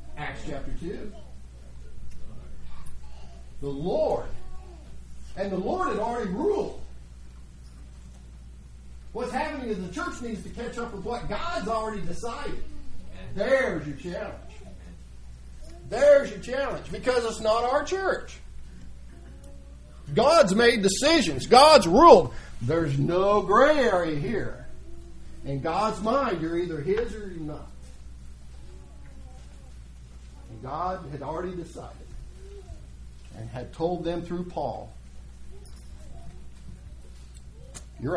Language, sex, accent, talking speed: English, male, American, 105 wpm